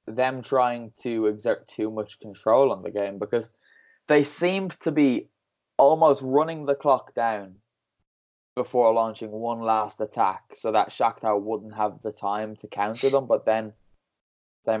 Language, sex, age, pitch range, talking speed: English, male, 20-39, 100-115 Hz, 155 wpm